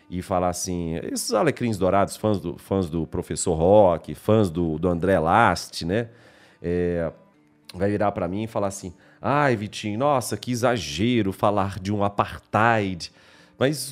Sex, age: male, 40-59